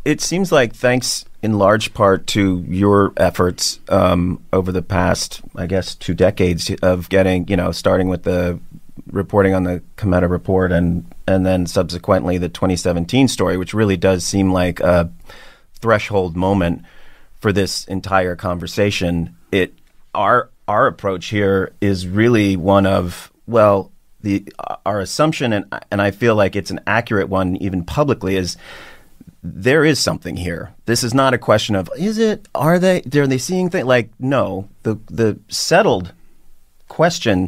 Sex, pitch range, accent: male, 95-115 Hz, American